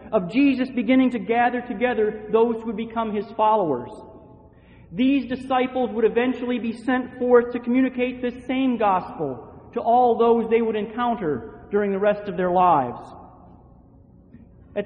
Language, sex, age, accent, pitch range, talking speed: English, male, 40-59, American, 205-250 Hz, 150 wpm